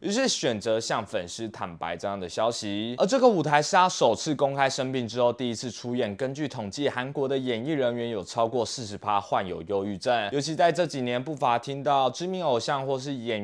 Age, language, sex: 20-39, Chinese, male